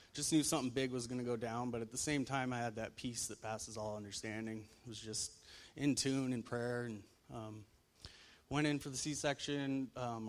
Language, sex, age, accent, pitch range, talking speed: English, male, 30-49, American, 110-125 Hz, 215 wpm